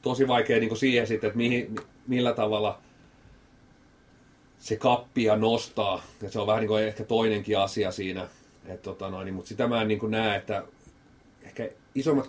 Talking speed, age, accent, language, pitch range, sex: 160 wpm, 30-49, native, Finnish, 100-120 Hz, male